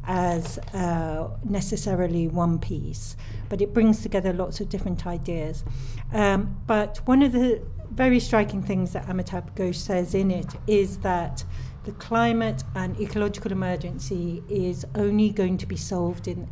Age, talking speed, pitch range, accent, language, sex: 60-79, 150 wpm, 145-215 Hz, British, English, female